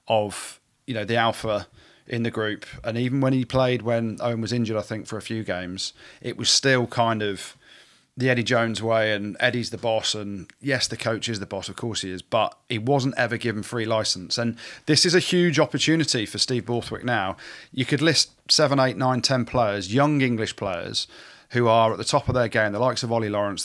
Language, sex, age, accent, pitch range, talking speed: English, male, 40-59, British, 110-130 Hz, 225 wpm